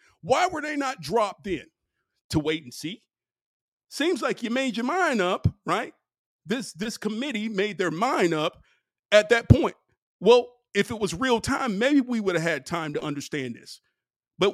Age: 50-69